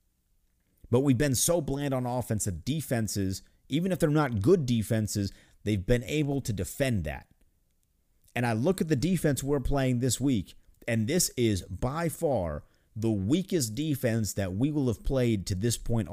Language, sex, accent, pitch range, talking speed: English, male, American, 95-140 Hz, 170 wpm